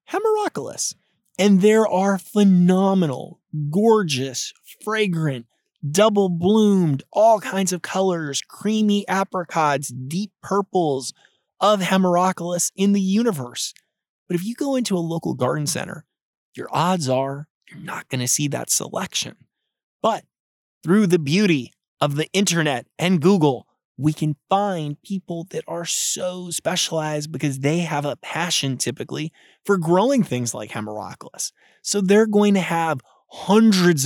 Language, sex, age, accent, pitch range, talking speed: English, male, 30-49, American, 145-195 Hz, 130 wpm